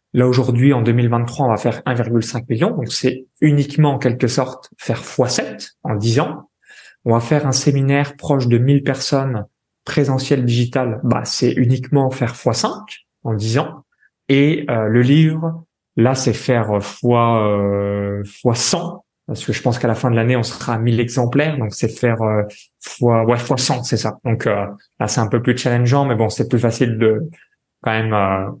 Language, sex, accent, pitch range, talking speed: French, male, French, 115-140 Hz, 180 wpm